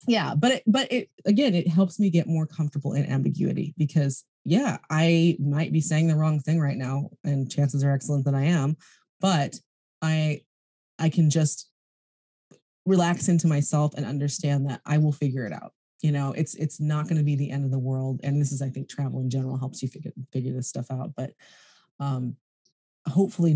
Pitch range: 140-170 Hz